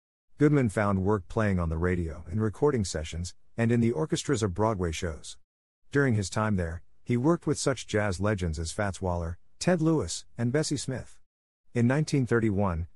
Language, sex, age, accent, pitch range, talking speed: English, male, 50-69, American, 90-115 Hz, 170 wpm